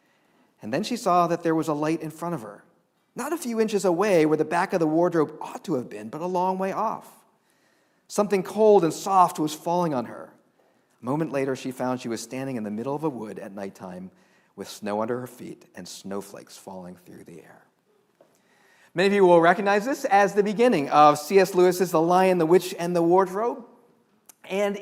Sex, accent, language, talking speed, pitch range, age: male, American, English, 215 wpm, 155-225 Hz, 40-59